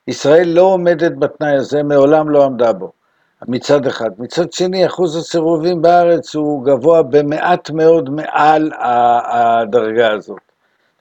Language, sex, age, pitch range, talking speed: Hebrew, male, 60-79, 135-165 Hz, 130 wpm